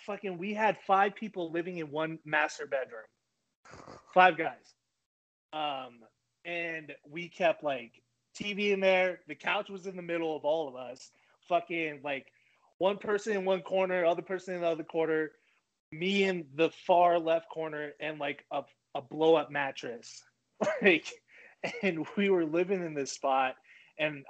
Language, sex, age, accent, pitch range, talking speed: English, male, 20-39, American, 140-175 Hz, 160 wpm